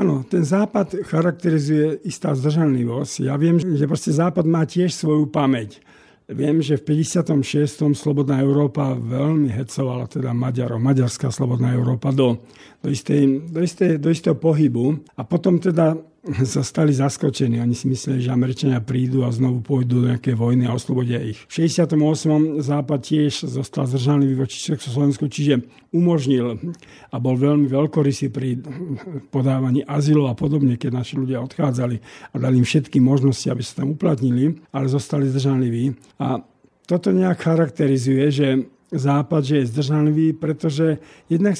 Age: 50-69